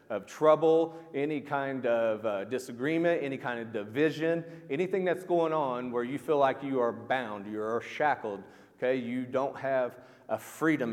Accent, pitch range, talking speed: American, 120-155 Hz, 165 wpm